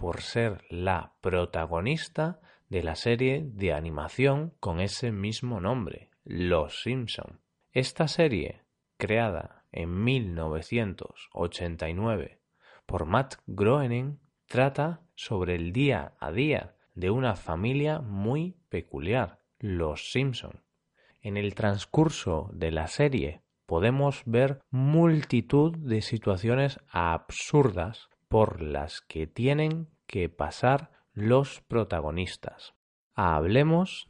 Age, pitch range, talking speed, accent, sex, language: 30-49, 85-140 Hz, 100 wpm, Spanish, male, Spanish